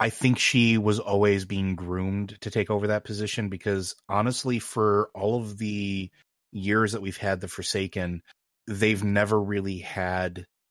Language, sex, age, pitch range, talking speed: English, male, 30-49, 95-105 Hz, 155 wpm